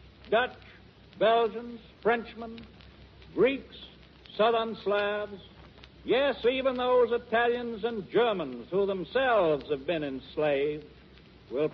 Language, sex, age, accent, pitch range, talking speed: English, male, 60-79, American, 190-225 Hz, 90 wpm